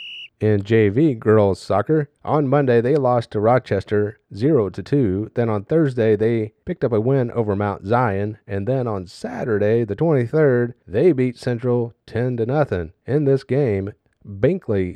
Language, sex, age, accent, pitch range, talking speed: English, male, 30-49, American, 100-130 Hz, 145 wpm